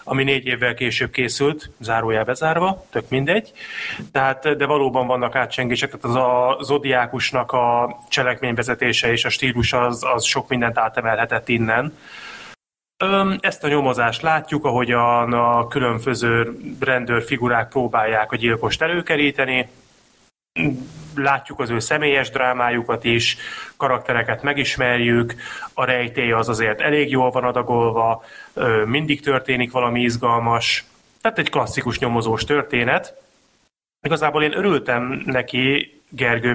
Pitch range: 120-145 Hz